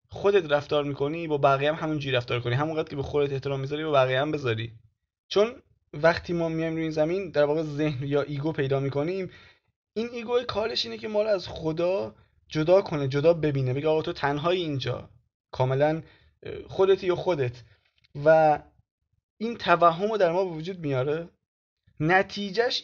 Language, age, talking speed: Persian, 20-39, 165 wpm